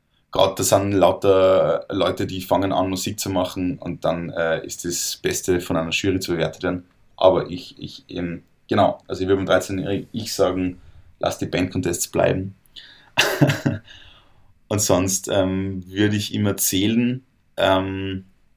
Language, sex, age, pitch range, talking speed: German, male, 20-39, 90-100 Hz, 150 wpm